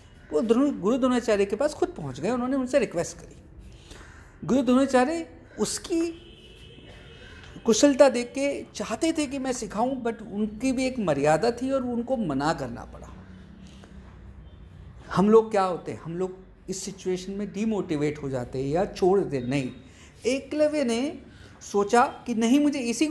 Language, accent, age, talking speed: Hindi, native, 50-69, 155 wpm